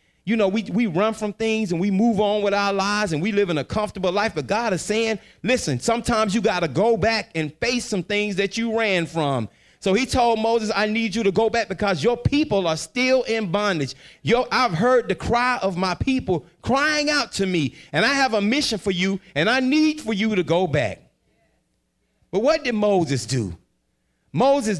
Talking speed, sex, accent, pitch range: 220 wpm, male, American, 180-255 Hz